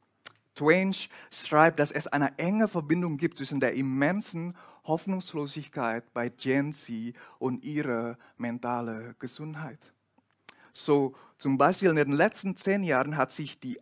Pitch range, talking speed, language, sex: 130-170 Hz, 130 wpm, German, male